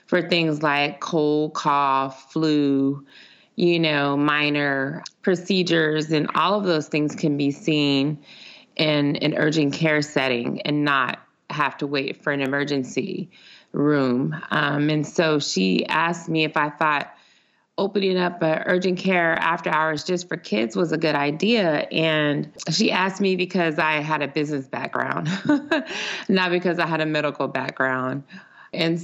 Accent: American